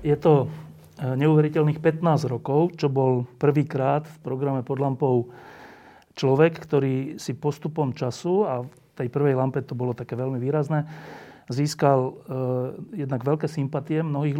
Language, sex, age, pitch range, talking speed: Slovak, male, 40-59, 125-150 Hz, 140 wpm